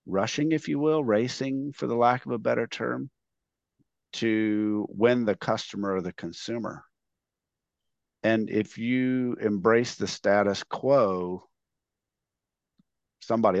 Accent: American